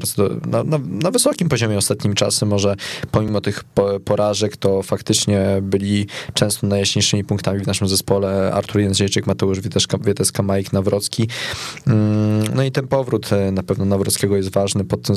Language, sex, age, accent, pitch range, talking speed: Polish, male, 20-39, native, 95-110 Hz, 155 wpm